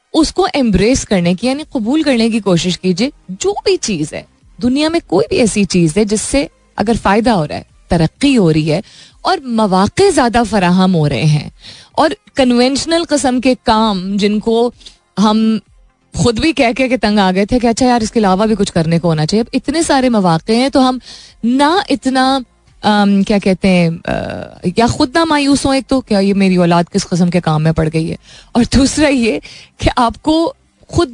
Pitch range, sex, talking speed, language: 180-250 Hz, female, 195 wpm, Hindi